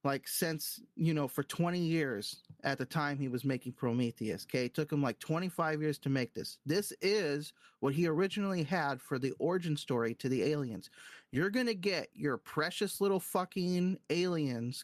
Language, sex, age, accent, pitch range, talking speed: English, male, 30-49, American, 140-180 Hz, 180 wpm